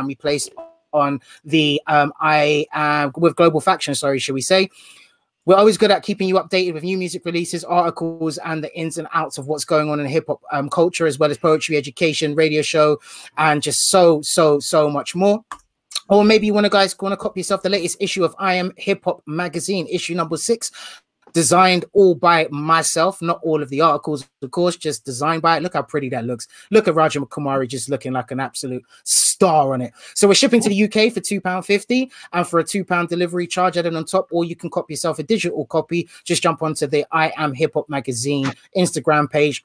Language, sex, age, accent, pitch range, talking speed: English, male, 30-49, British, 150-190 Hz, 220 wpm